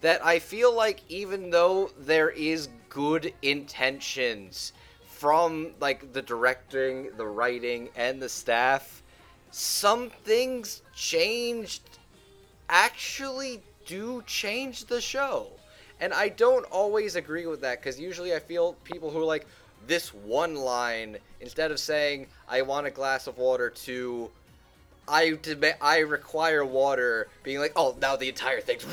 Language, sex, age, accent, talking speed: English, male, 20-39, American, 140 wpm